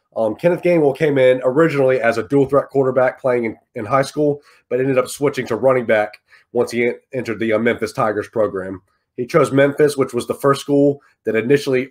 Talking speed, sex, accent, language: 200 wpm, male, American, English